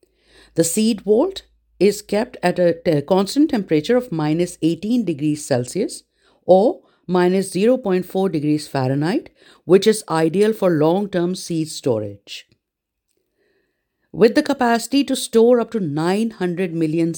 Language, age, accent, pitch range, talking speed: English, 50-69, Indian, 155-220 Hz, 125 wpm